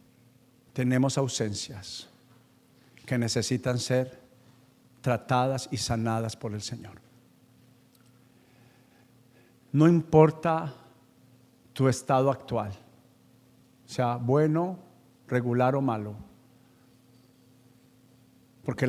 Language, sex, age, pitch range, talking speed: Spanish, male, 50-69, 125-150 Hz, 70 wpm